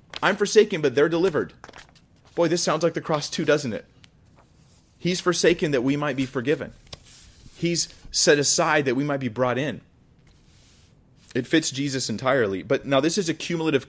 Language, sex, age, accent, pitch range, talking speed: English, male, 30-49, American, 110-140 Hz, 175 wpm